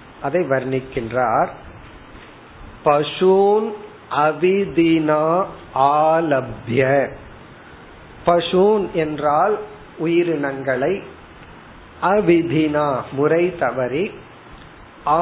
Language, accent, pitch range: Tamil, native, 135-170 Hz